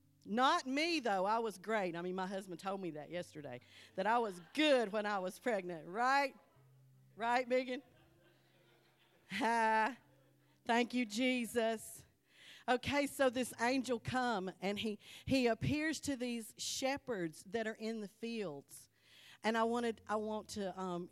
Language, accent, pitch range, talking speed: English, American, 140-225 Hz, 150 wpm